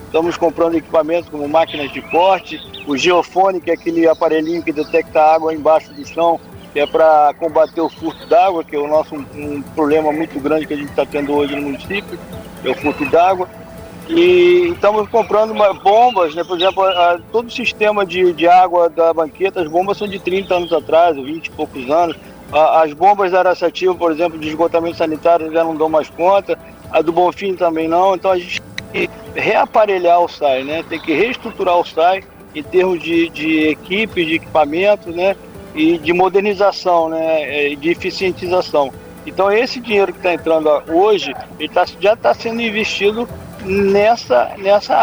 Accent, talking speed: Brazilian, 180 wpm